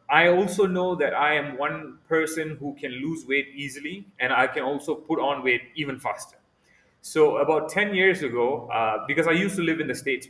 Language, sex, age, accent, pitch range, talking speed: English, male, 30-49, Indian, 125-160 Hz, 210 wpm